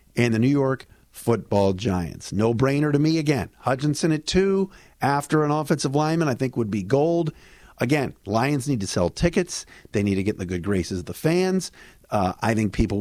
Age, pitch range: 50-69, 110-170 Hz